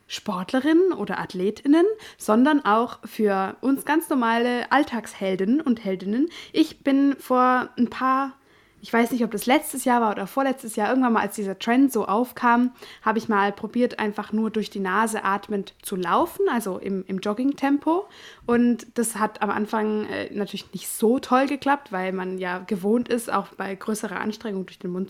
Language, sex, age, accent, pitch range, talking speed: German, female, 20-39, German, 200-255 Hz, 175 wpm